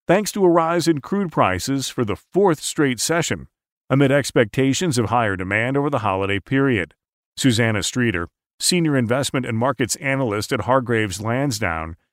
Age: 40-59